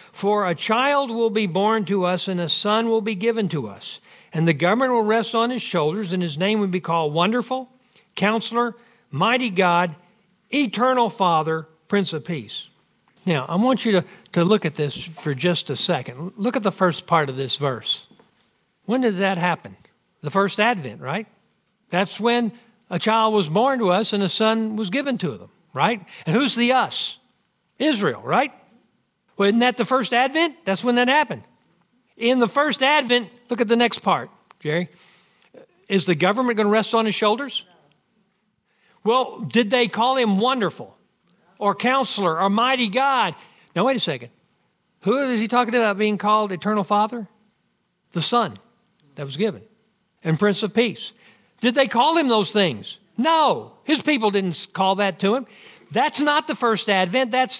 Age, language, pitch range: 60-79, English, 185-240 Hz